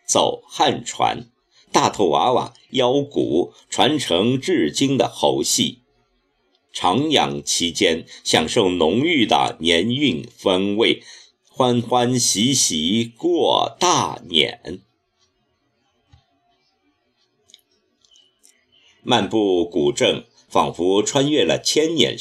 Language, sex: Chinese, male